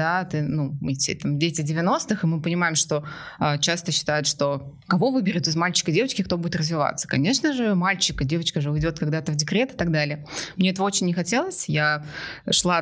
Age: 20-39